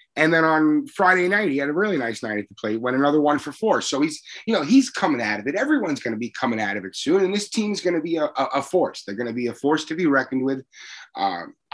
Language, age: English, 30-49